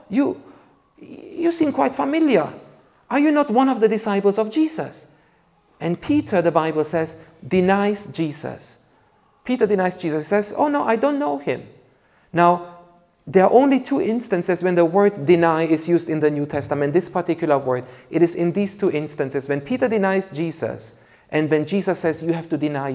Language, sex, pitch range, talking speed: English, male, 155-210 Hz, 180 wpm